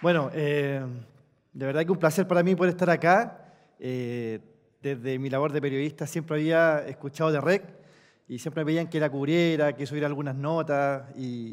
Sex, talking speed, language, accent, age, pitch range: male, 175 wpm, Spanish, Argentinian, 20-39, 130-165 Hz